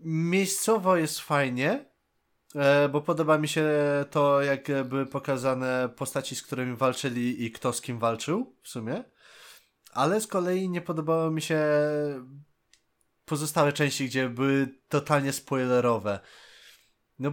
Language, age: Polish, 20-39